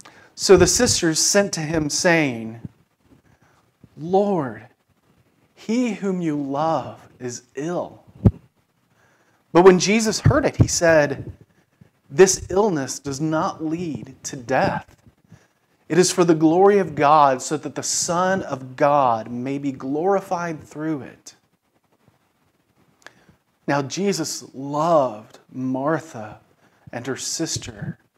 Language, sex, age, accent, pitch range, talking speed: English, male, 40-59, American, 125-165 Hz, 115 wpm